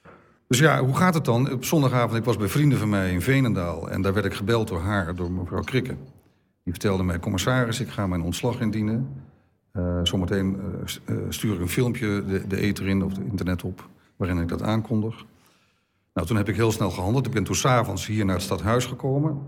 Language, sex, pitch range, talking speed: Dutch, male, 95-120 Hz, 215 wpm